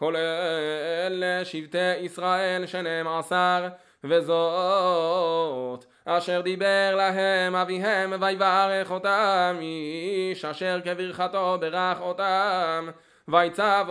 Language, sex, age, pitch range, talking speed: Hebrew, male, 20-39, 170-190 Hz, 80 wpm